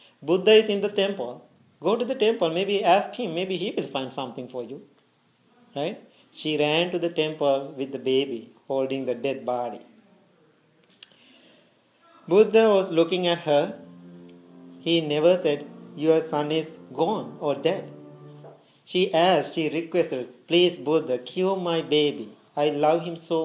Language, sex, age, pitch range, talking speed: English, male, 40-59, 150-200 Hz, 150 wpm